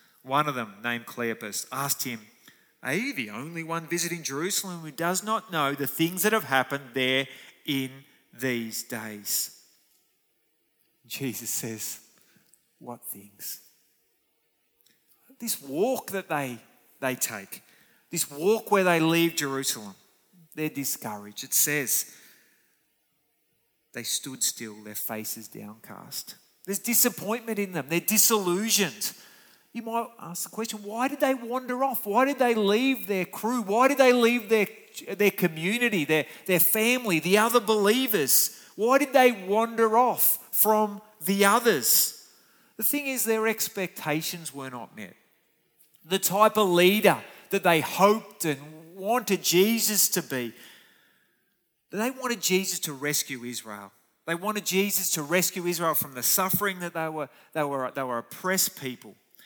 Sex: male